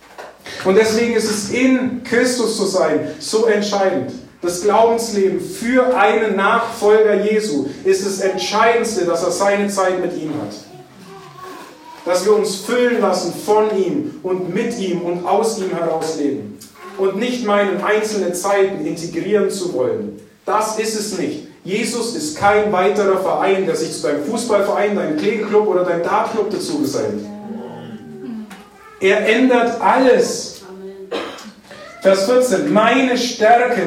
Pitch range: 190-230 Hz